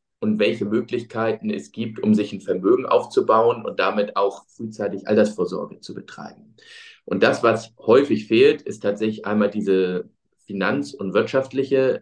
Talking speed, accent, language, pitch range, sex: 145 wpm, German, German, 100-125 Hz, male